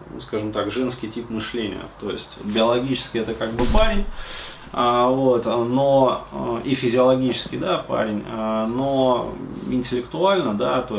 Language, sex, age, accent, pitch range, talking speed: Russian, male, 20-39, native, 105-125 Hz, 130 wpm